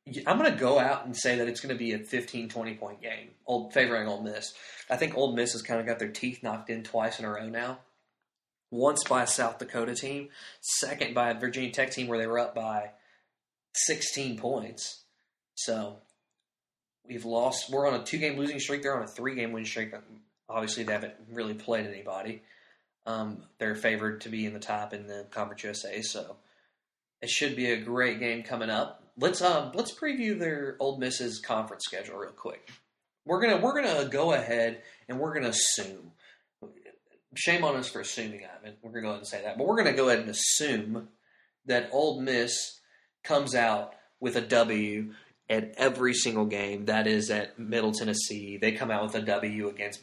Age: 20-39